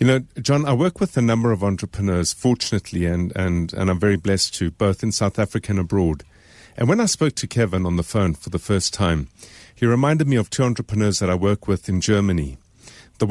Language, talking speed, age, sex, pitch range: English, 225 wpm, 50-69, male, 95-125 Hz